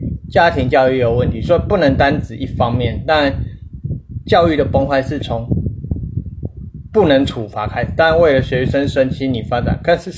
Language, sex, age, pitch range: Chinese, male, 20-39, 115-140 Hz